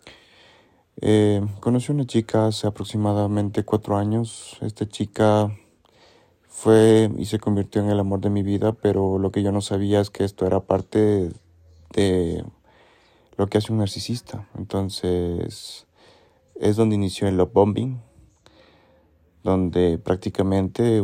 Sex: male